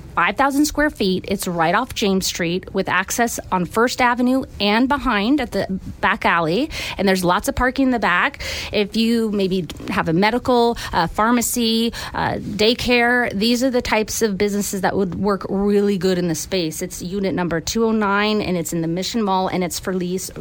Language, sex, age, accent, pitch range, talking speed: English, female, 30-49, American, 200-270 Hz, 190 wpm